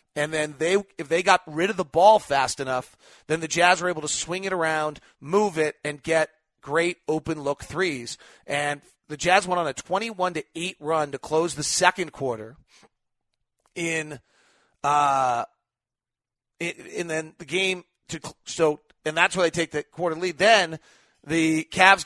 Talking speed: 175 wpm